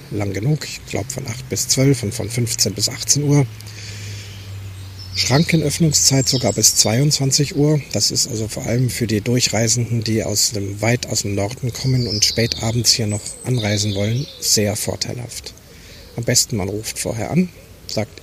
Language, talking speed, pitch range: German, 165 wpm, 105-125 Hz